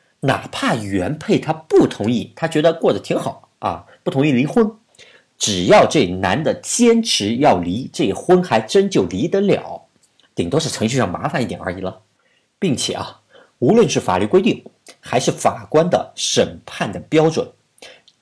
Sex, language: male, Chinese